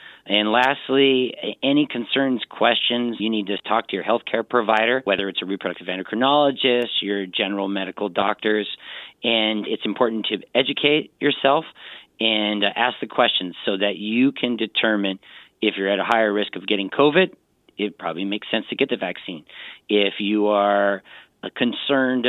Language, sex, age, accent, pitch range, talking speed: English, male, 40-59, American, 100-120 Hz, 155 wpm